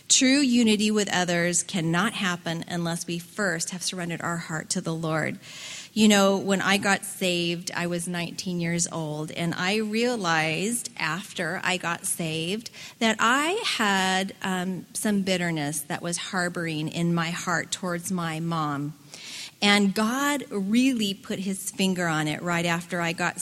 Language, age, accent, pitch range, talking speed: English, 40-59, American, 175-225 Hz, 155 wpm